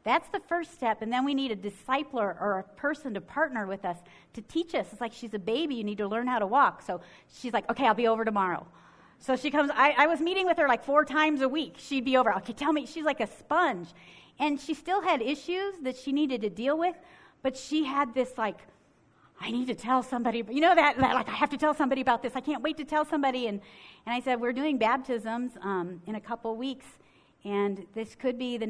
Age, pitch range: 40-59, 205-285 Hz